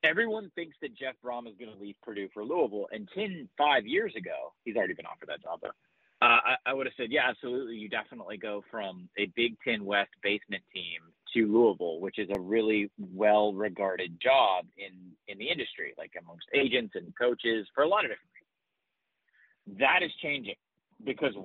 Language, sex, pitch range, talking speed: English, male, 105-145 Hz, 195 wpm